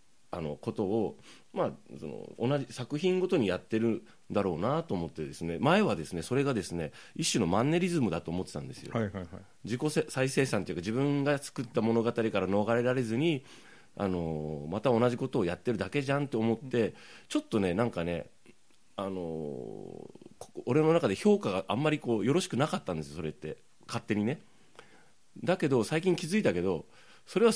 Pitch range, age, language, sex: 90-140 Hz, 30-49, Japanese, male